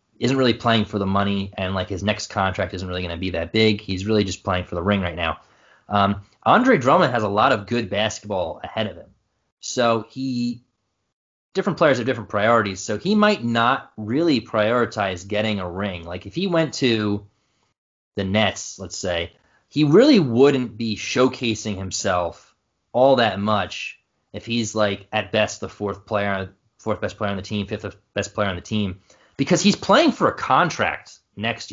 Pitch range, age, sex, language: 100-130 Hz, 20-39, male, English